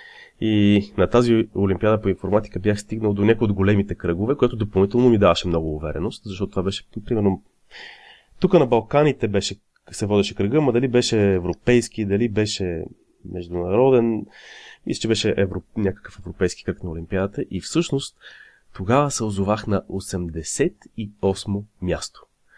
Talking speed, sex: 145 wpm, male